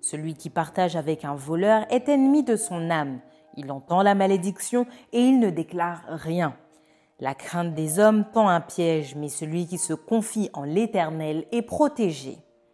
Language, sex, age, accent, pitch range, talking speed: French, female, 30-49, French, 155-225 Hz, 170 wpm